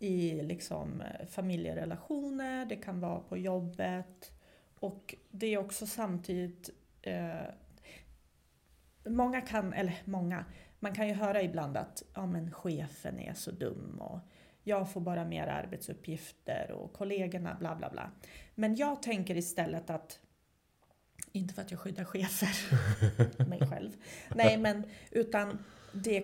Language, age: Swedish, 30-49